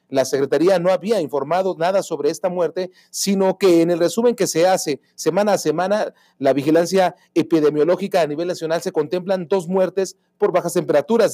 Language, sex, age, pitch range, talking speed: Spanish, male, 40-59, 155-195 Hz, 175 wpm